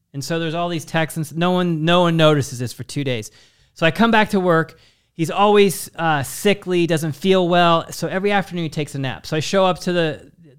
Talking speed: 240 wpm